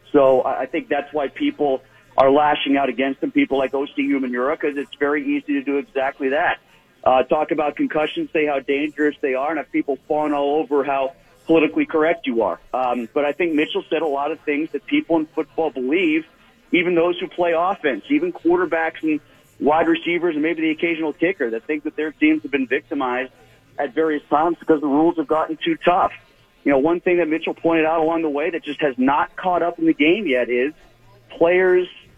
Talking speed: 215 wpm